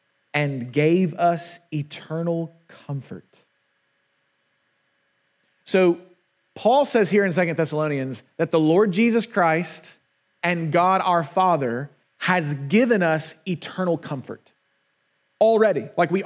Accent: American